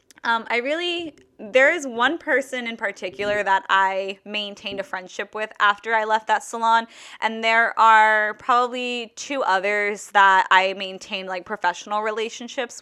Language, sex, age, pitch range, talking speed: English, female, 10-29, 190-230 Hz, 150 wpm